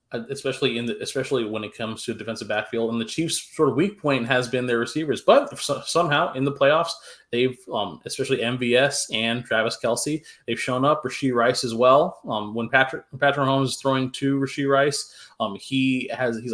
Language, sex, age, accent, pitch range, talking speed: English, male, 20-39, American, 120-140 Hz, 200 wpm